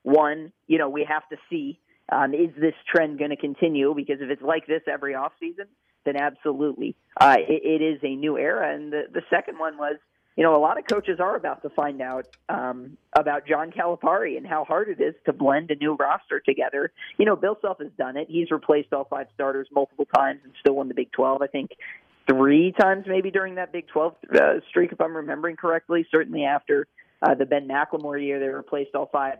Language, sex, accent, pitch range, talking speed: English, male, American, 140-175 Hz, 225 wpm